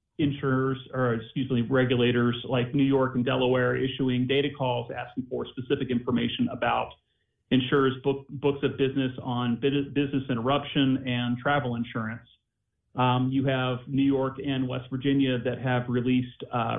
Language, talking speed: English, 145 wpm